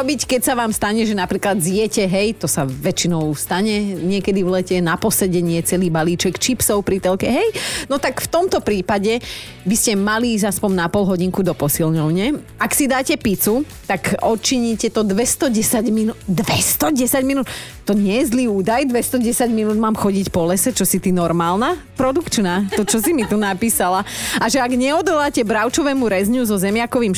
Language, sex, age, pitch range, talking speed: Slovak, female, 30-49, 180-235 Hz, 175 wpm